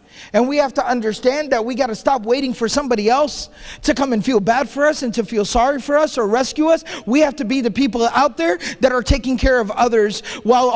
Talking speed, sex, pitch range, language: 250 wpm, male, 215-260 Hz, English